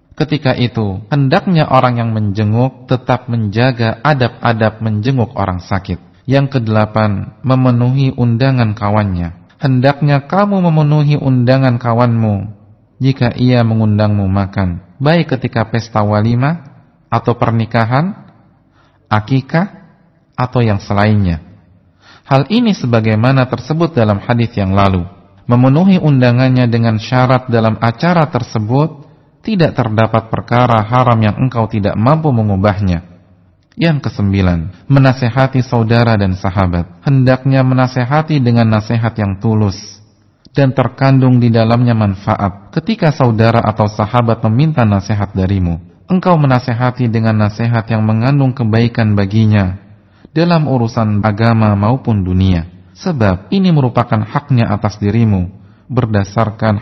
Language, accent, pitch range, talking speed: English, Indonesian, 105-130 Hz, 110 wpm